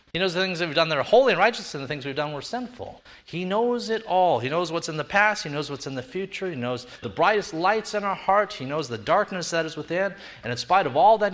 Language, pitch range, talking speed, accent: English, 165-220 Hz, 295 wpm, American